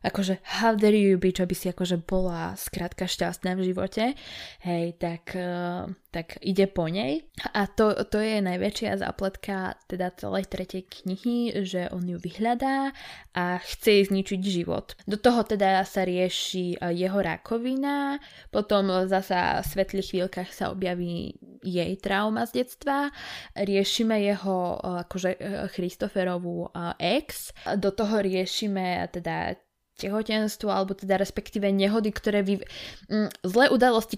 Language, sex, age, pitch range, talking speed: Slovak, female, 20-39, 185-215 Hz, 130 wpm